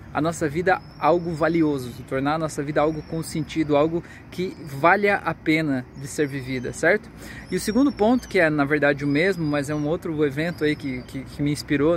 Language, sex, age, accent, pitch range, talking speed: Portuguese, male, 20-39, Brazilian, 145-185 Hz, 210 wpm